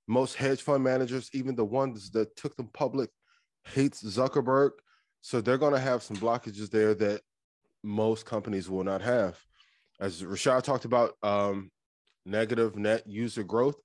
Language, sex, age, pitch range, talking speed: English, male, 20-39, 105-135 Hz, 155 wpm